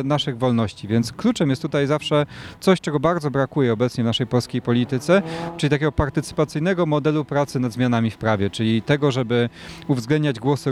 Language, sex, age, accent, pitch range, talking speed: Polish, male, 30-49, native, 120-150 Hz, 170 wpm